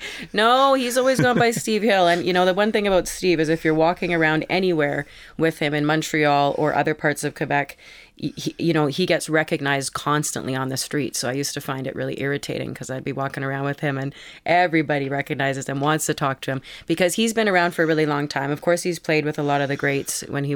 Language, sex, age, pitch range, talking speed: Dutch, female, 30-49, 135-155 Hz, 245 wpm